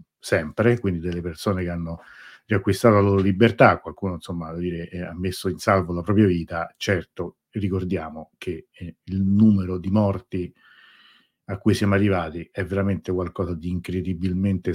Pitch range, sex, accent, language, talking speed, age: 90-110 Hz, male, native, Italian, 145 wpm, 50-69